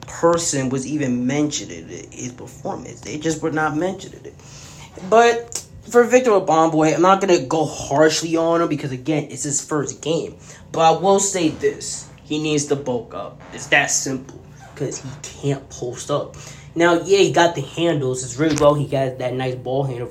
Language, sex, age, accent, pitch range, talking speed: English, male, 10-29, American, 130-160 Hz, 190 wpm